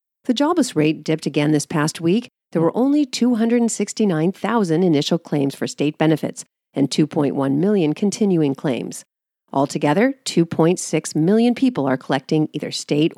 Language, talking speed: English, 135 wpm